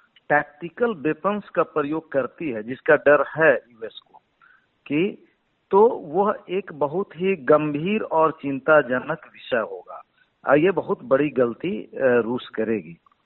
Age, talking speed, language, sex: 50-69, 125 wpm, Hindi, male